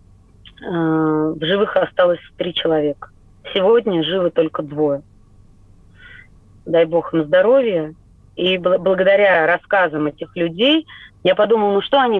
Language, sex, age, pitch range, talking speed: Russian, female, 30-49, 155-200 Hz, 115 wpm